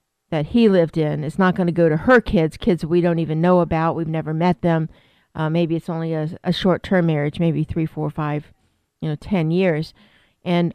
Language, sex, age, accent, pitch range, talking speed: English, female, 50-69, American, 160-180 Hz, 225 wpm